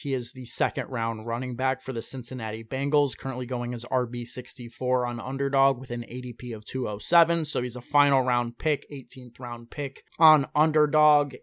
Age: 20-39